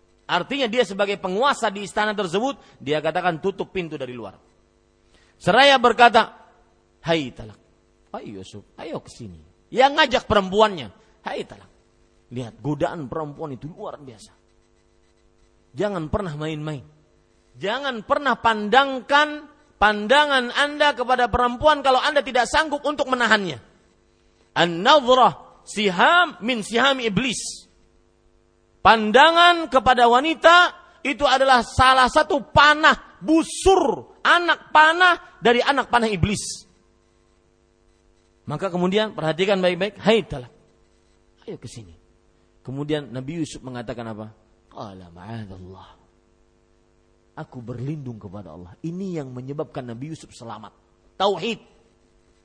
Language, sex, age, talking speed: Malay, male, 40-59, 110 wpm